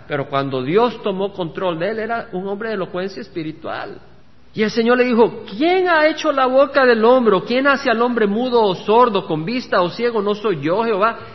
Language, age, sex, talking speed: Spanish, 50-69, male, 210 wpm